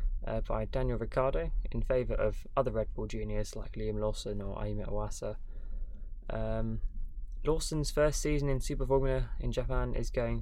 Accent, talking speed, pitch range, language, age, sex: British, 160 wpm, 110-125 Hz, English, 20-39, male